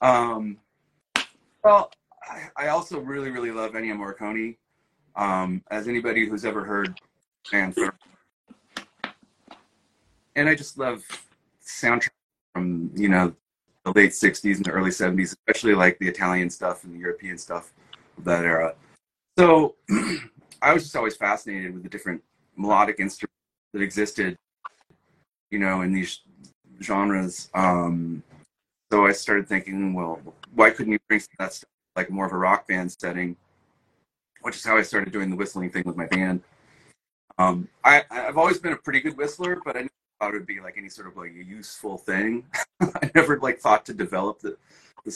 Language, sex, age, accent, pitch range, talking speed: English, male, 30-49, American, 90-110 Hz, 165 wpm